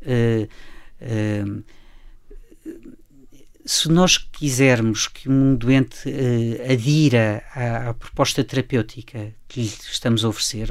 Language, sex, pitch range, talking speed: Portuguese, female, 120-150 Hz, 105 wpm